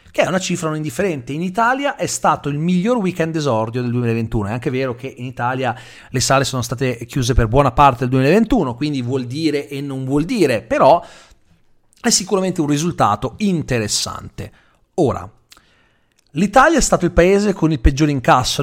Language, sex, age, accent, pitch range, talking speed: Italian, male, 40-59, native, 125-170 Hz, 175 wpm